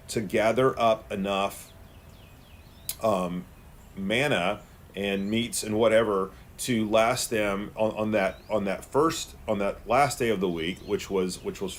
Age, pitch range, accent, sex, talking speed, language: 40-59, 95-115 Hz, American, male, 155 wpm, English